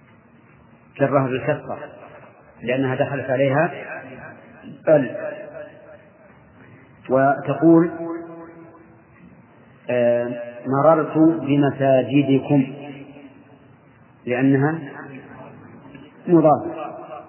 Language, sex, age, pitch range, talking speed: Arabic, male, 40-59, 135-155 Hz, 40 wpm